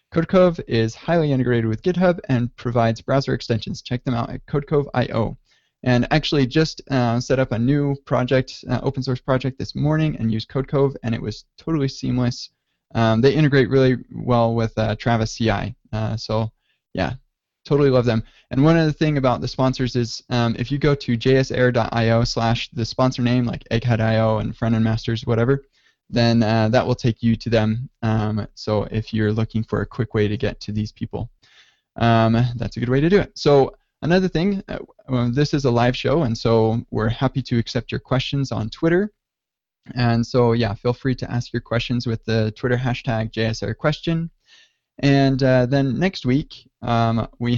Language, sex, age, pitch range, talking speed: English, male, 20-39, 115-135 Hz, 185 wpm